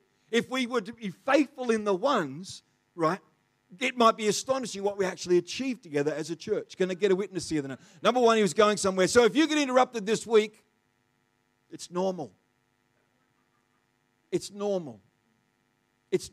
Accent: Australian